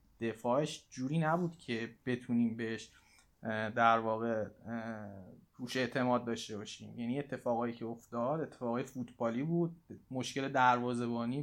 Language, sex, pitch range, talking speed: Persian, male, 120-145 Hz, 110 wpm